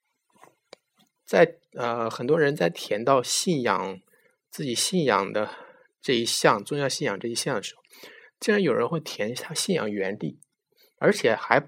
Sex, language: male, Chinese